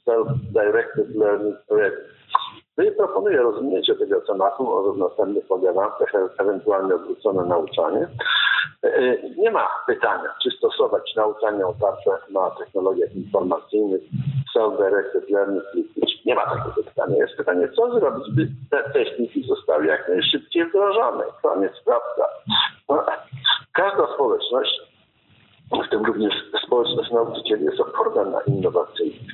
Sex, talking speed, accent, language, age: male, 115 wpm, native, Polish, 50-69